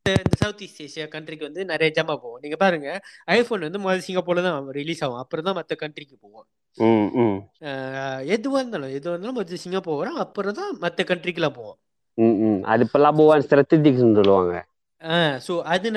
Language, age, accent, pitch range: Tamil, 20-39, native, 140-195 Hz